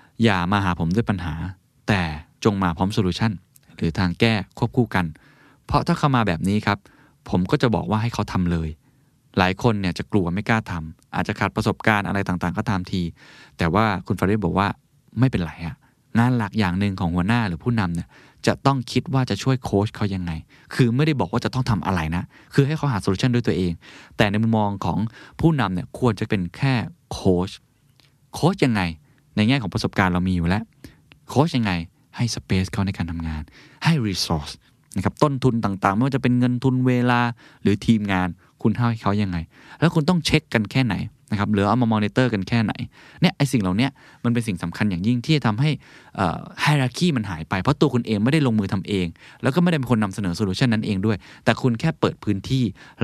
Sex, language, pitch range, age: male, Thai, 95-130 Hz, 20-39